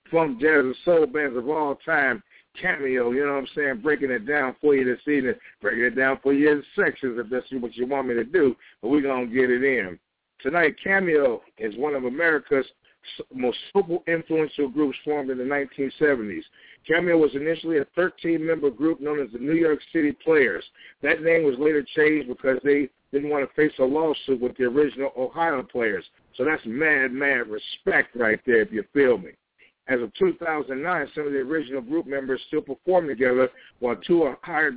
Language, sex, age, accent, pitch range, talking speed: English, male, 50-69, American, 135-165 Hz, 195 wpm